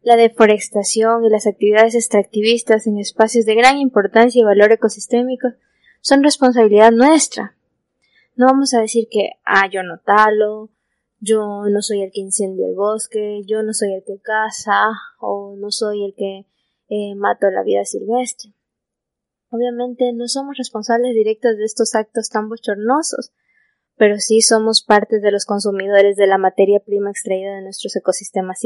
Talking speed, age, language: 155 wpm, 20-39, Spanish